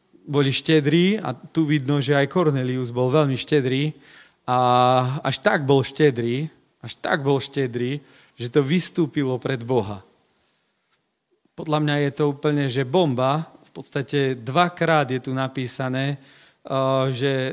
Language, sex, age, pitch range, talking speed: Slovak, male, 40-59, 130-160 Hz, 135 wpm